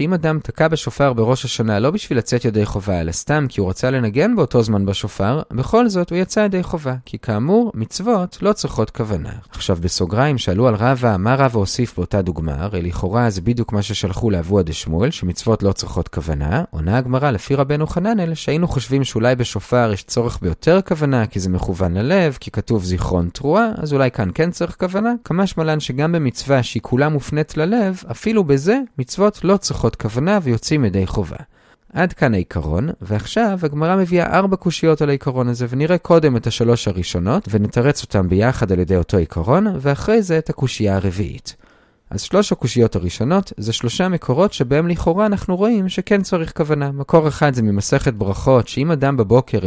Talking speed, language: 160 wpm, Hebrew